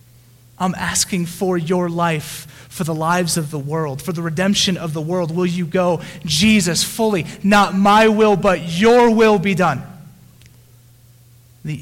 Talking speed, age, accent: 155 wpm, 30-49, American